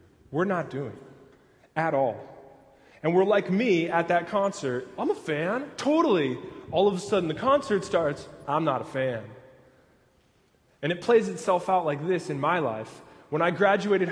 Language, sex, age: English, male, 20-39